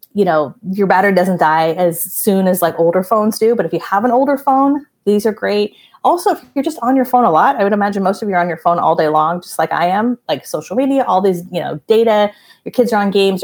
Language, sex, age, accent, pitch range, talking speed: English, female, 30-49, American, 180-240 Hz, 275 wpm